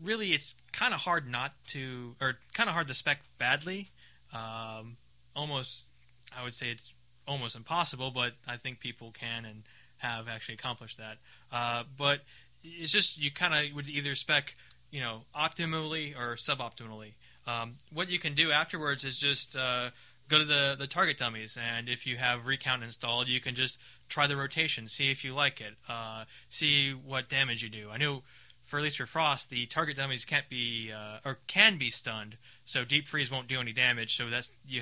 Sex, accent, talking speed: male, American, 195 wpm